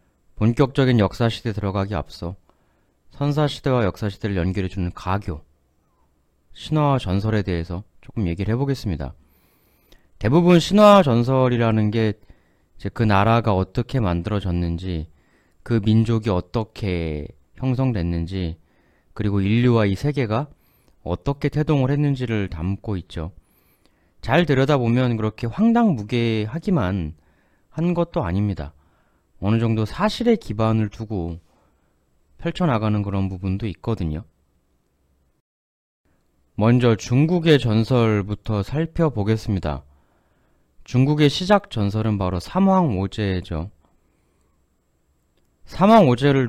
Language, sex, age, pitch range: Korean, male, 30-49, 85-125 Hz